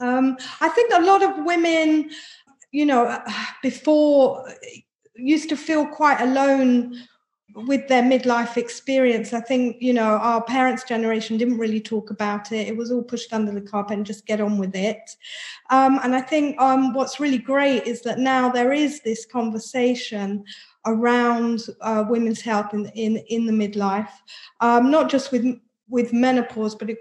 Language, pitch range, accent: English, 220-255 Hz, British